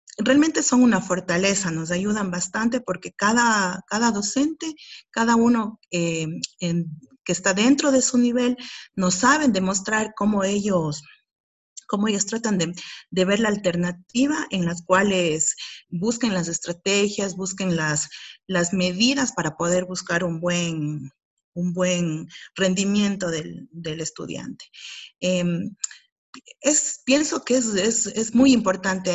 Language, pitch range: Spanish, 170-225 Hz